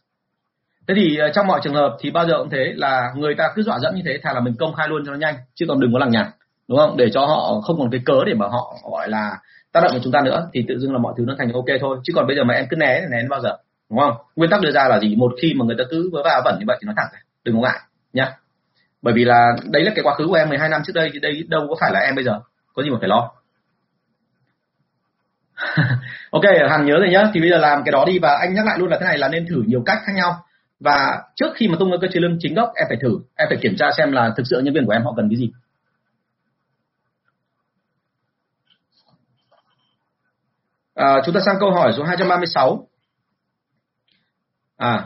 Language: Vietnamese